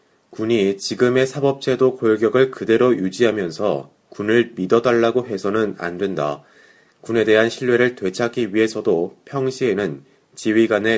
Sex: male